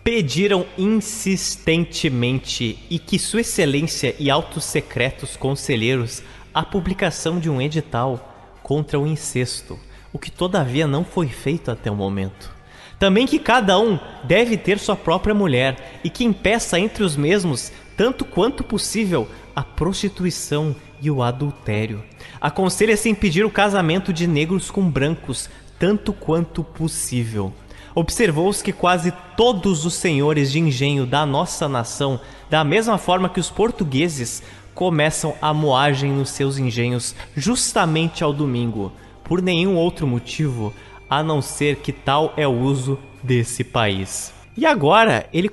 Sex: male